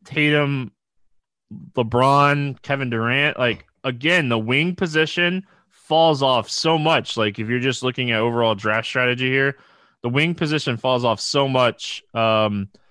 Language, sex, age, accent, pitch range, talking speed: English, male, 20-39, American, 115-155 Hz, 145 wpm